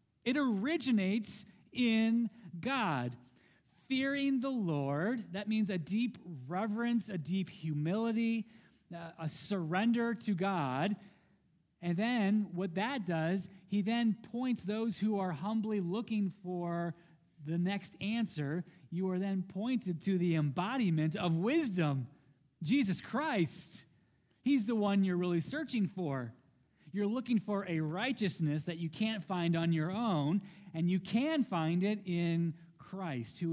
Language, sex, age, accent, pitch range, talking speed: English, male, 30-49, American, 165-215 Hz, 130 wpm